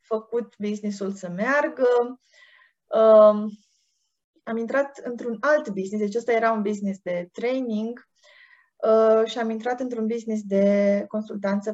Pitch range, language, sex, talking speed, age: 200-255 Hz, Romanian, female, 130 wpm, 20-39